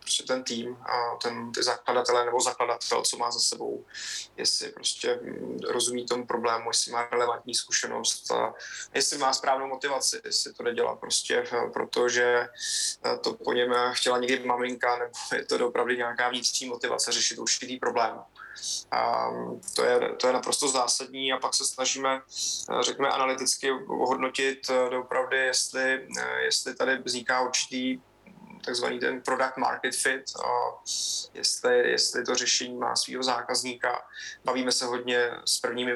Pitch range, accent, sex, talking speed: 125-135 Hz, native, male, 140 wpm